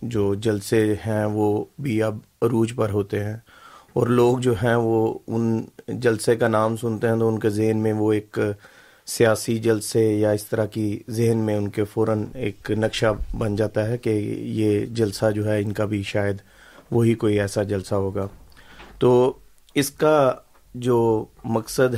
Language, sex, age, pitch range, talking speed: Urdu, male, 30-49, 105-120 Hz, 170 wpm